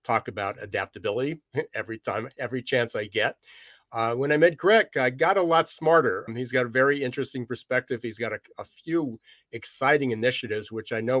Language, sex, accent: English, male, American